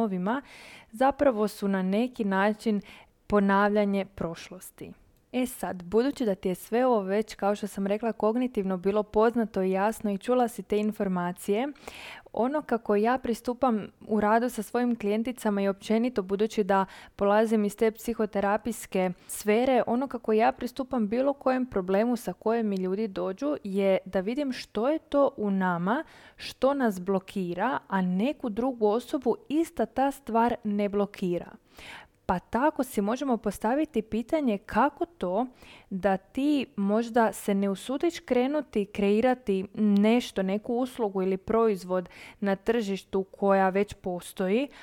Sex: female